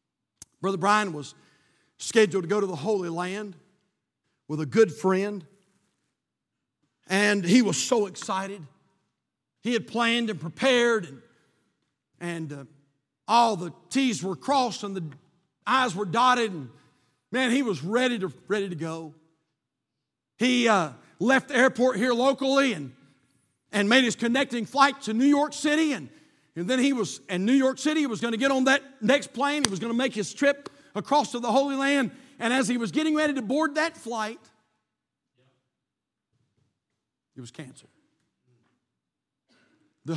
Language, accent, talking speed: English, American, 160 wpm